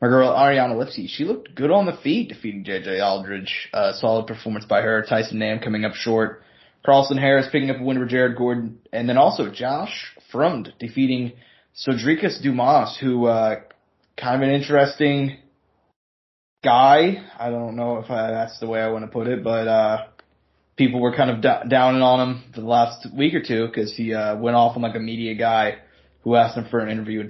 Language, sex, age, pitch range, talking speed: English, male, 20-39, 110-135 Hz, 200 wpm